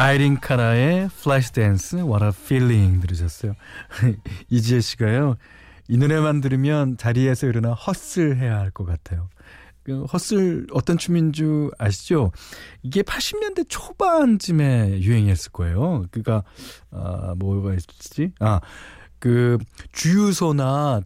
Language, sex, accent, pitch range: Korean, male, native, 100-155 Hz